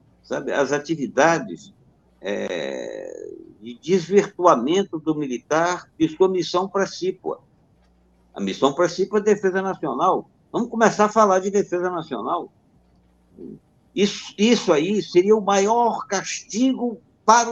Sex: male